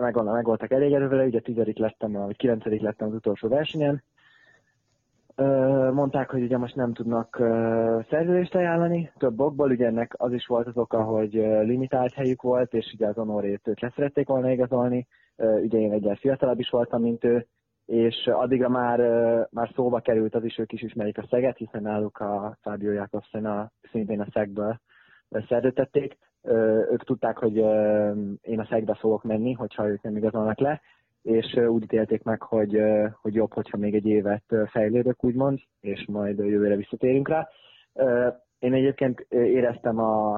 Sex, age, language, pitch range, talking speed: male, 20-39, Hungarian, 110-125 Hz, 160 wpm